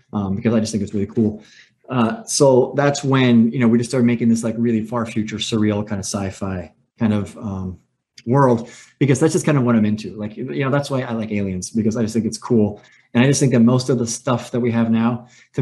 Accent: American